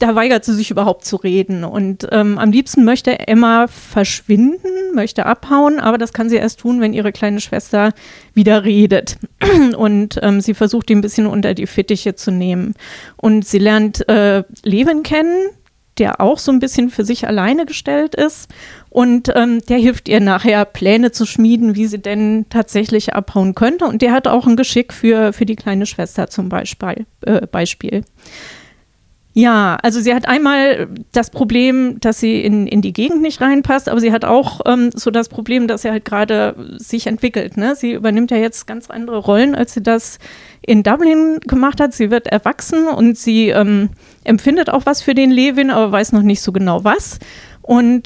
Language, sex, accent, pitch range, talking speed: German, female, German, 210-250 Hz, 185 wpm